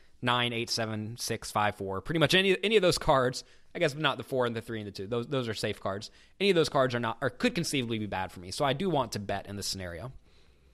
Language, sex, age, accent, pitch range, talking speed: English, male, 20-39, American, 100-135 Hz, 255 wpm